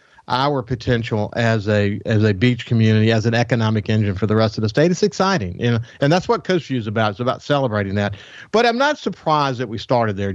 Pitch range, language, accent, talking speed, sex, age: 115-150 Hz, English, American, 240 wpm, male, 50-69